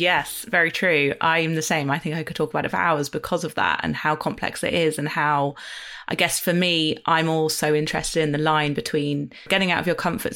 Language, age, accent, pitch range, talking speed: English, 20-39, British, 160-190 Hz, 245 wpm